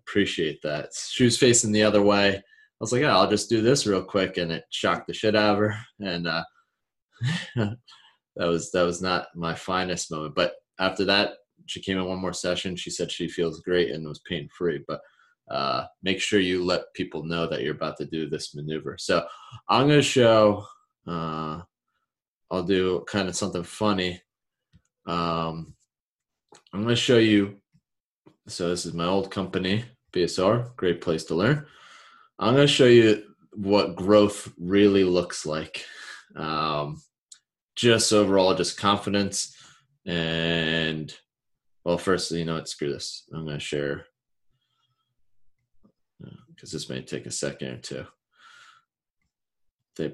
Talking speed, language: 165 wpm, English